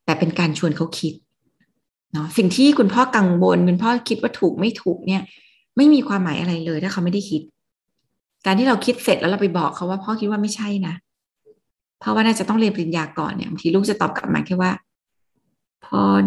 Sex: female